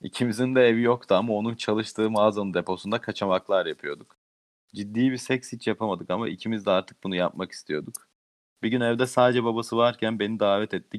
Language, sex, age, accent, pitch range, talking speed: Turkish, male, 40-59, native, 95-115 Hz, 175 wpm